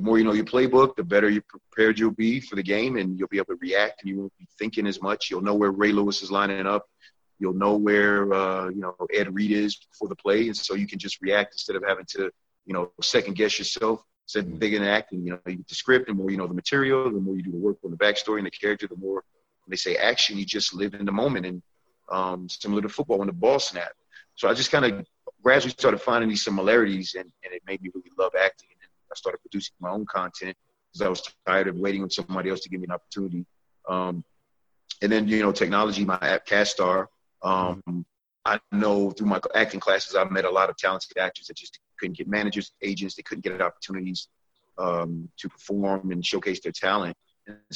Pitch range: 95-105 Hz